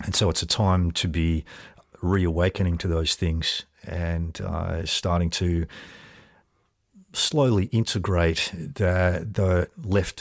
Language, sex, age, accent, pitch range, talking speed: English, male, 40-59, Australian, 85-95 Hz, 120 wpm